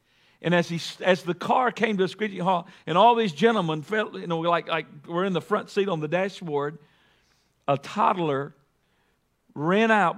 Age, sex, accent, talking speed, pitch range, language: 50-69, male, American, 190 wpm, 130-180 Hz, English